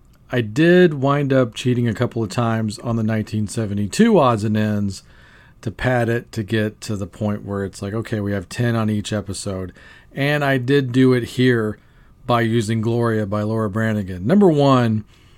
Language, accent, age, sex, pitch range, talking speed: English, American, 40-59, male, 100-130 Hz, 185 wpm